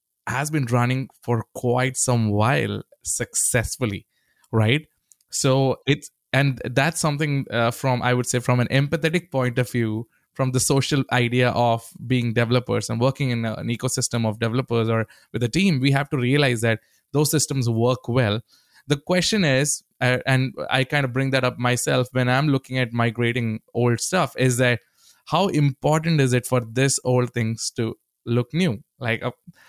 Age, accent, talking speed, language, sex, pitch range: 20-39, Indian, 175 wpm, English, male, 120-145 Hz